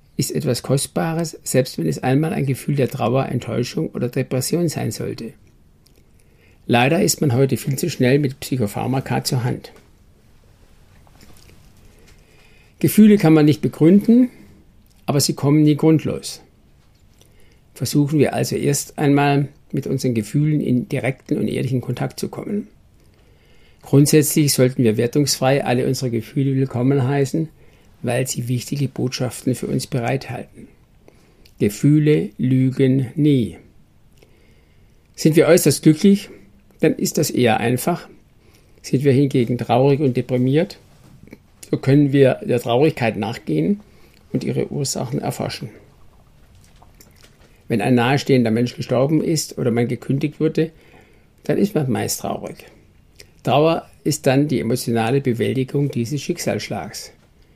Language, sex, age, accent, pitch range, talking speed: German, male, 60-79, German, 125-150 Hz, 125 wpm